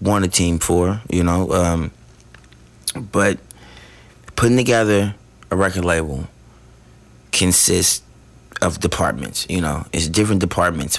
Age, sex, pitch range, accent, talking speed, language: 30-49, male, 85-110 Hz, American, 115 wpm, English